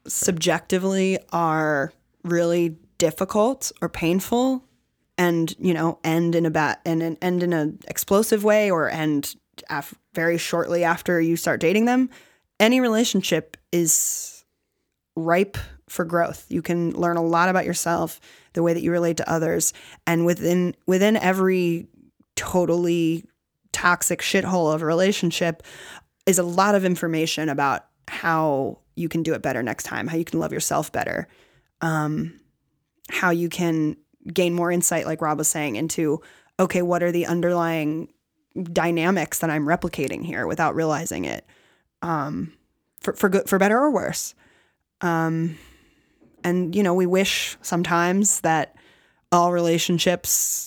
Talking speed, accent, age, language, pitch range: 145 wpm, American, 20-39, English, 165-185 Hz